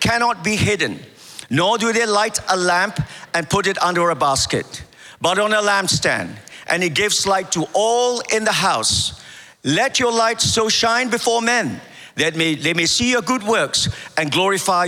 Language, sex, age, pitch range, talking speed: English, male, 50-69, 170-240 Hz, 180 wpm